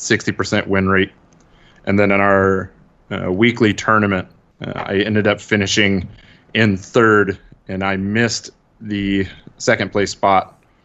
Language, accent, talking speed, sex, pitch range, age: English, American, 135 wpm, male, 95-105 Hz, 30-49